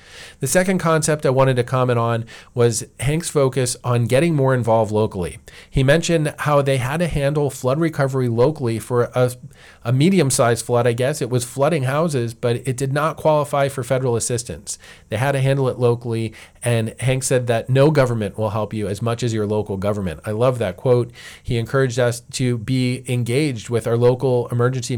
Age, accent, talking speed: 40-59, American, 190 wpm